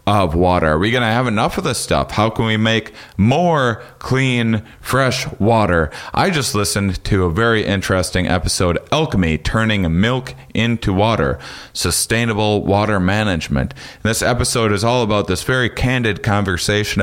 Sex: male